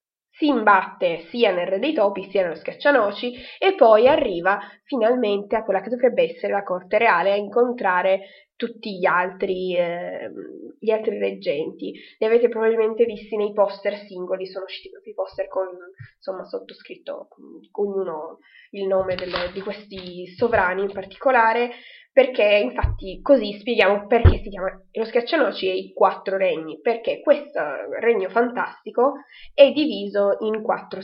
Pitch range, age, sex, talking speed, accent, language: 190-235 Hz, 20-39, female, 150 wpm, native, Italian